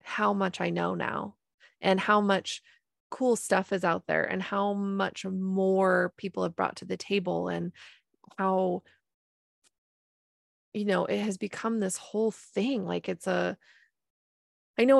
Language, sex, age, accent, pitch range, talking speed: English, female, 20-39, American, 175-210 Hz, 150 wpm